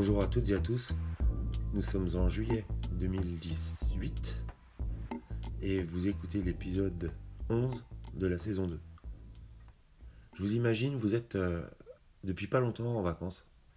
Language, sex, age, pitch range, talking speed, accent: French, male, 30-49, 85-100 Hz, 135 wpm, French